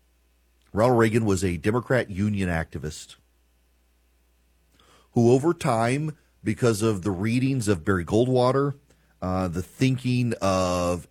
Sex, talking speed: male, 115 wpm